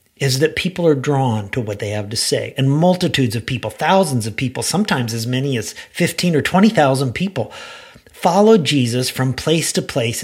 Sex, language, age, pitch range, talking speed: male, English, 50-69, 125-190 Hz, 190 wpm